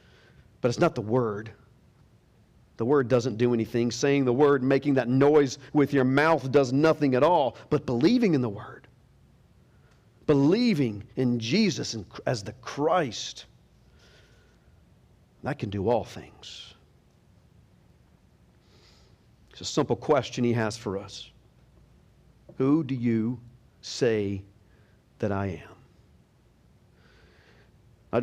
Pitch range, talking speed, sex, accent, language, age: 115-145 Hz, 115 wpm, male, American, English, 50-69